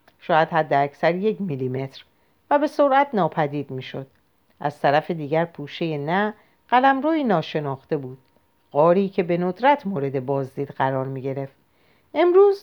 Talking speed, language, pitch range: 145 wpm, Persian, 145-200 Hz